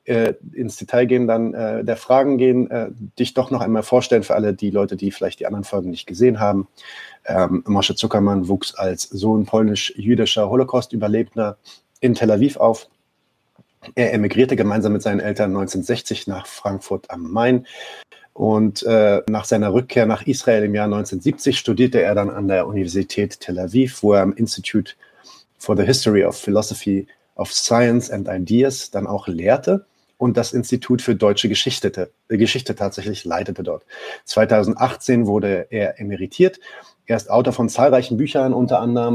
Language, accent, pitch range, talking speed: German, German, 100-125 Hz, 165 wpm